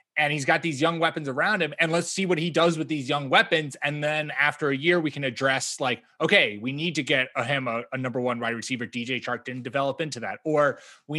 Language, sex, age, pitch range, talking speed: English, male, 20-39, 120-155 Hz, 250 wpm